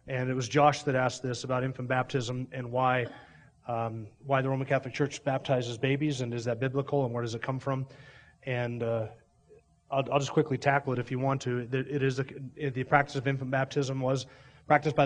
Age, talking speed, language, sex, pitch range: 30-49, 220 wpm, English, male, 125-140 Hz